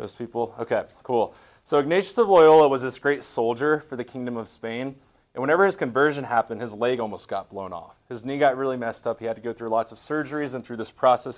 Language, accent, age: English, American, 30-49